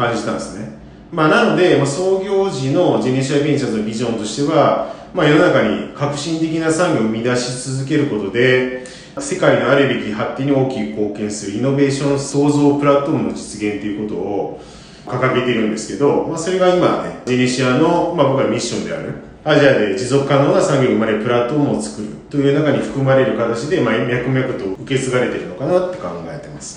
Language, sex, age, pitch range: Japanese, male, 40-59, 110-145 Hz